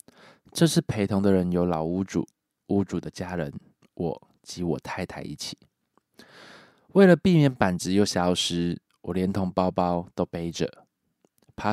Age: 20-39